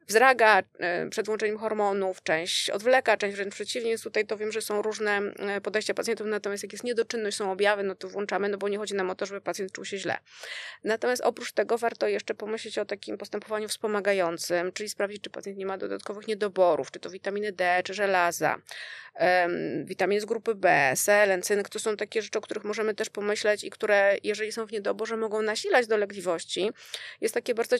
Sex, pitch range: female, 200-245 Hz